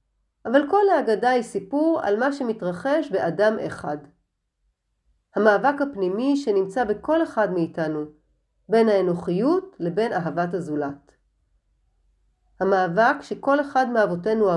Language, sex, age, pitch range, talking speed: Hebrew, female, 40-59, 170-255 Hz, 105 wpm